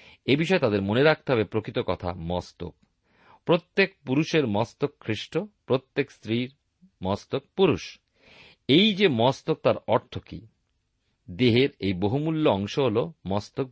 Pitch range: 100-150 Hz